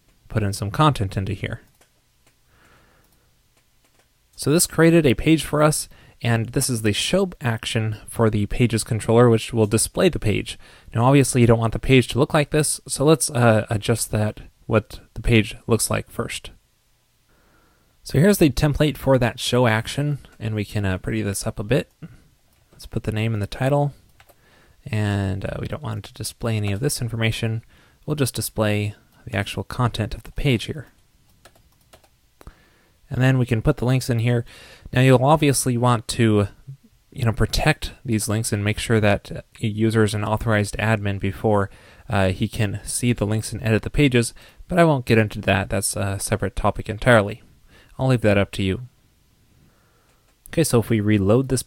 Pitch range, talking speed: 105-130 Hz, 185 wpm